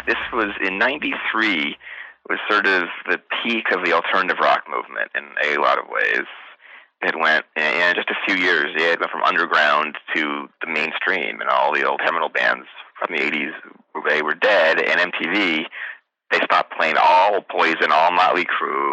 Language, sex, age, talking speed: English, male, 30-49, 175 wpm